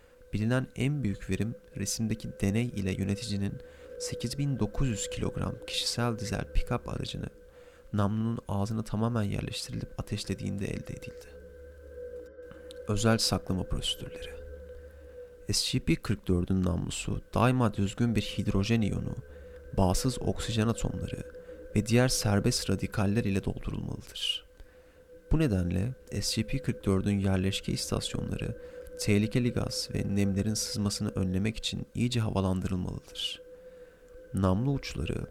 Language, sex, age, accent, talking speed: Turkish, male, 30-49, native, 95 wpm